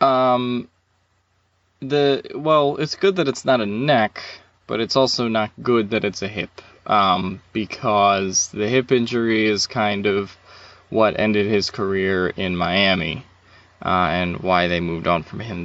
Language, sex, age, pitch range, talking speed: English, male, 20-39, 95-115 Hz, 155 wpm